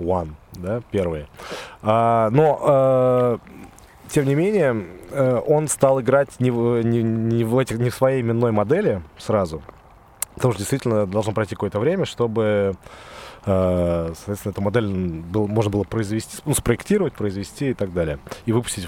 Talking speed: 125 wpm